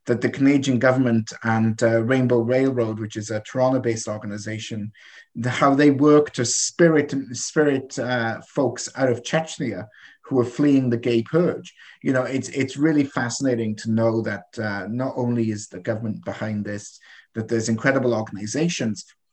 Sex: male